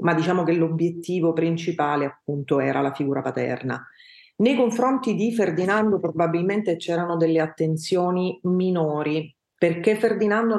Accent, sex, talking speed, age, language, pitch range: native, female, 120 wpm, 30-49, Italian, 155-180 Hz